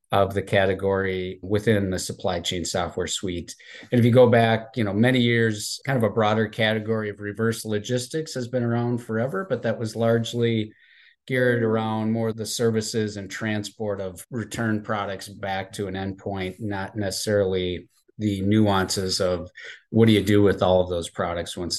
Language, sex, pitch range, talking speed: English, male, 95-110 Hz, 175 wpm